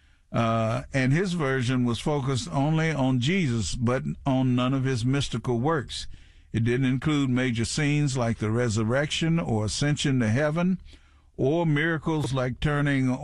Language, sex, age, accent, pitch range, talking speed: English, male, 50-69, American, 110-150 Hz, 145 wpm